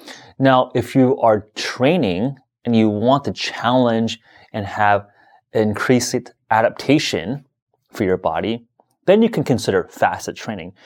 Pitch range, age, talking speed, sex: 95-125 Hz, 30-49, 125 wpm, male